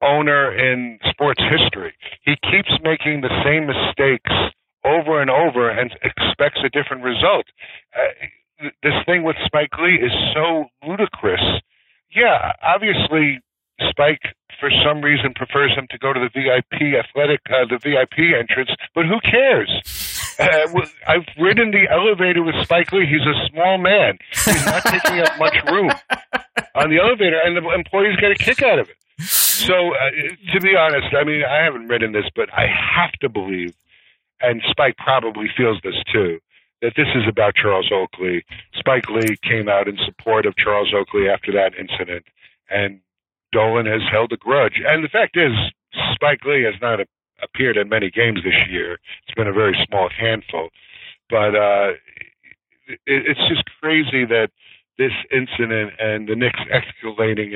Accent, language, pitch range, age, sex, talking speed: American, English, 110-155 Hz, 60-79, male, 165 wpm